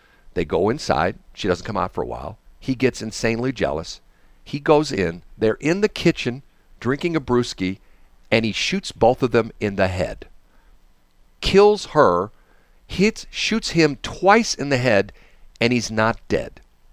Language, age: English, 50-69